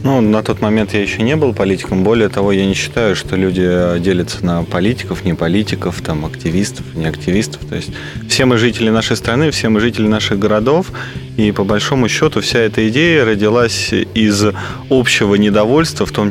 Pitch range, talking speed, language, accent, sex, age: 95-110 Hz, 175 wpm, Russian, native, male, 20-39